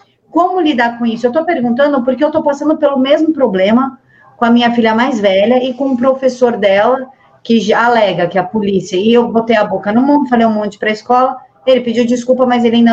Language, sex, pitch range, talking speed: Portuguese, female, 220-265 Hz, 235 wpm